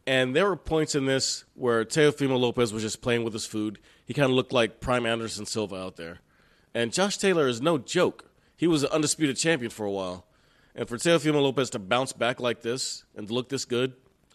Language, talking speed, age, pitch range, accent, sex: English, 220 wpm, 30-49, 110-130 Hz, American, male